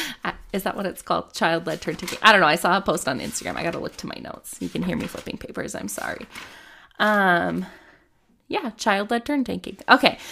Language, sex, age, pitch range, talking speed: English, female, 20-39, 175-235 Hz, 220 wpm